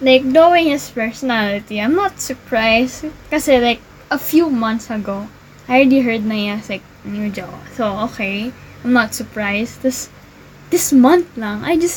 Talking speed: 160 wpm